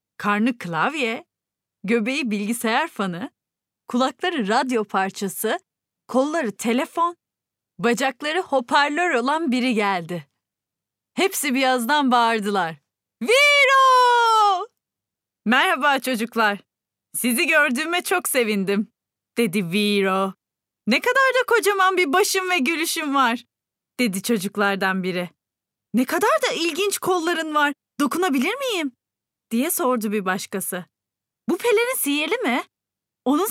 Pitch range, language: 205-295 Hz, Turkish